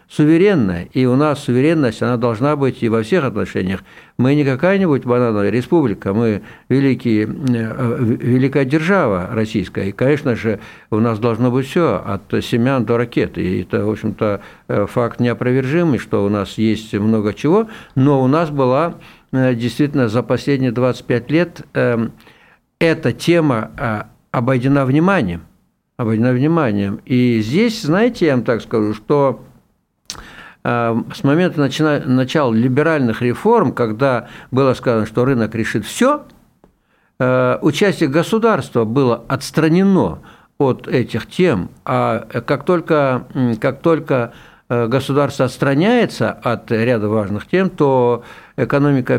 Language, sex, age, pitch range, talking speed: Russian, male, 60-79, 115-150 Hz, 125 wpm